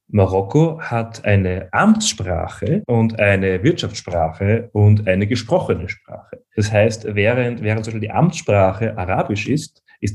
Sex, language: male, German